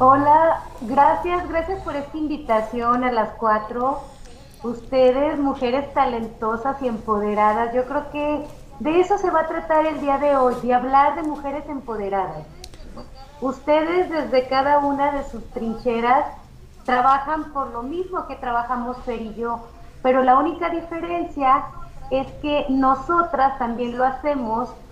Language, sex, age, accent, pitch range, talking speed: Spanish, female, 30-49, Mexican, 245-300 Hz, 140 wpm